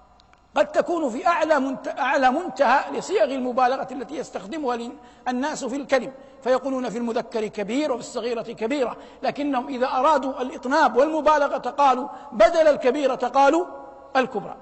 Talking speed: 125 wpm